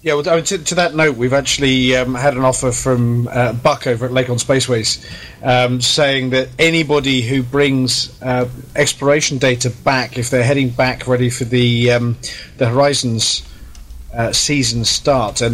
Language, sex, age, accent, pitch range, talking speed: English, male, 30-49, British, 120-135 Hz, 160 wpm